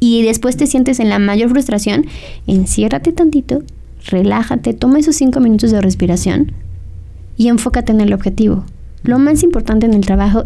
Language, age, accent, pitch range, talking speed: Spanish, 20-39, Mexican, 195-245 Hz, 160 wpm